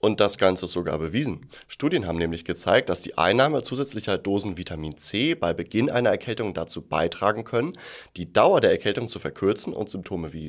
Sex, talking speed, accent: male, 190 wpm, German